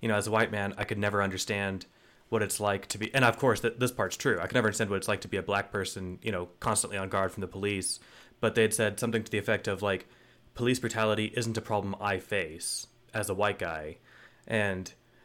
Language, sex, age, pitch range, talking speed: English, male, 20-39, 100-115 Hz, 245 wpm